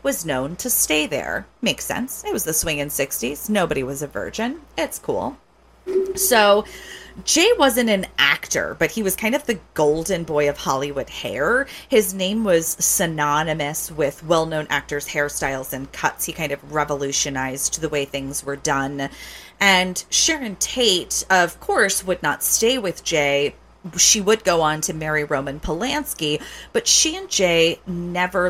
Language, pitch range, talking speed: English, 150-210 Hz, 160 wpm